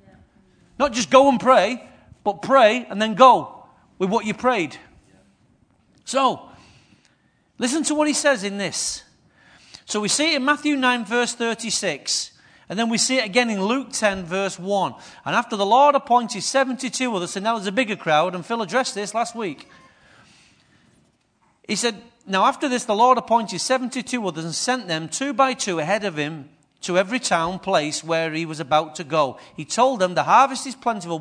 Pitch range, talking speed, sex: 190-250 Hz, 185 wpm, male